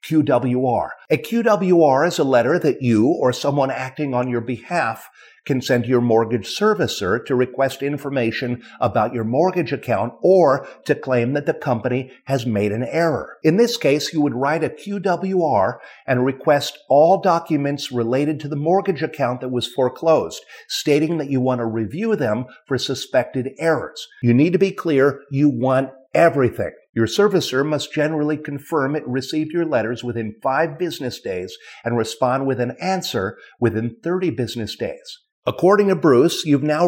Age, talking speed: 50-69, 165 wpm